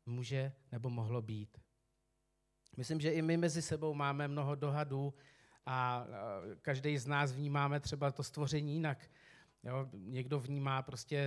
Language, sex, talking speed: Czech, male, 140 wpm